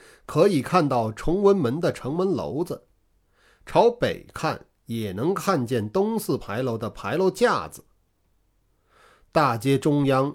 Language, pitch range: Chinese, 100-160 Hz